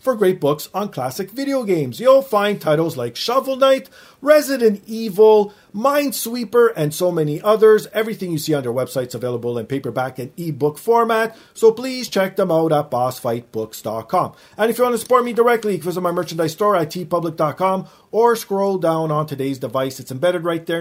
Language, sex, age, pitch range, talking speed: English, male, 40-59, 150-235 Hz, 185 wpm